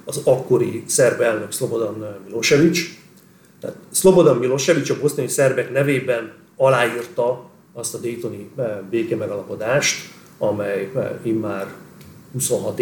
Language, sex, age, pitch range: Hungarian, male, 40-59, 115-170 Hz